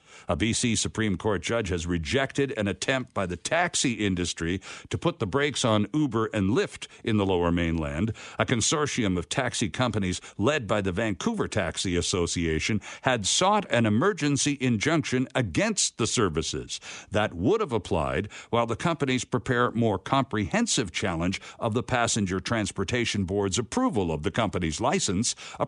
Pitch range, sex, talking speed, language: 105-150 Hz, male, 155 wpm, English